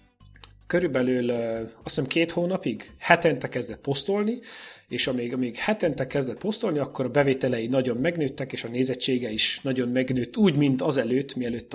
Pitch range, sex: 120-155 Hz, male